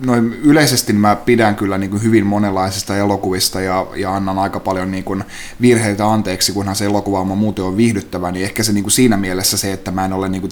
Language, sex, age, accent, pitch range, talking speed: Finnish, male, 30-49, native, 95-115 Hz, 205 wpm